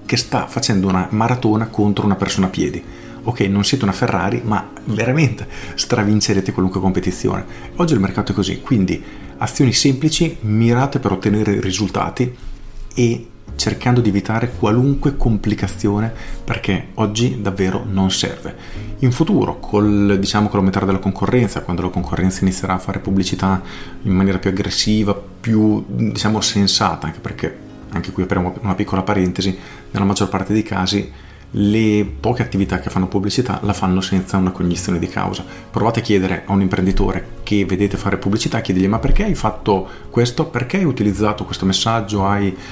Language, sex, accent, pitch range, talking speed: Italian, male, native, 95-115 Hz, 155 wpm